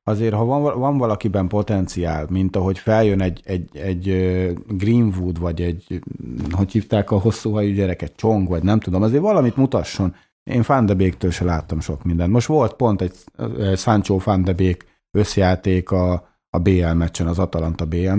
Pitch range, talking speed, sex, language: 90-105 Hz, 150 wpm, male, Hungarian